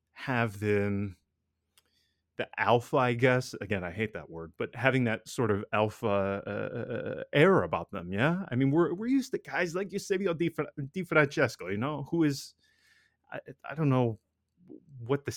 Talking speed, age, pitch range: 170 wpm, 30-49, 100-145 Hz